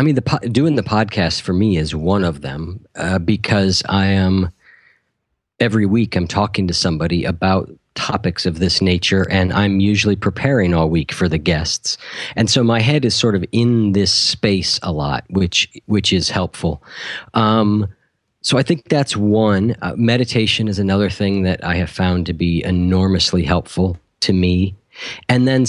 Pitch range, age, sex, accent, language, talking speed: 90-110 Hz, 40-59, male, American, English, 175 wpm